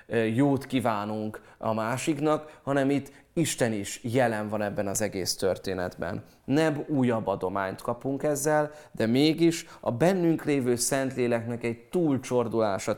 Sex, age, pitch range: male, 30-49, 110-140 Hz